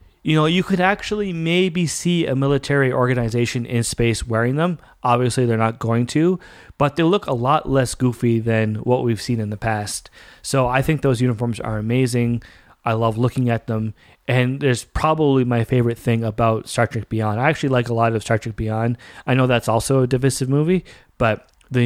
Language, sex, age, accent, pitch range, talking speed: English, male, 30-49, American, 115-155 Hz, 200 wpm